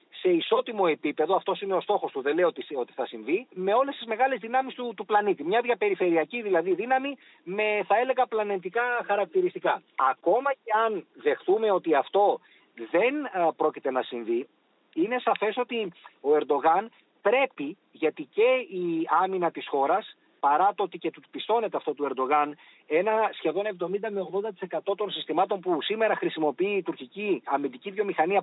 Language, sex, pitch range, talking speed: Greek, male, 175-270 Hz, 160 wpm